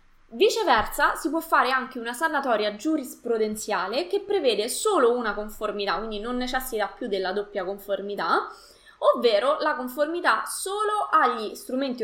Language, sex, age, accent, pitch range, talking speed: Italian, female, 20-39, native, 205-285 Hz, 130 wpm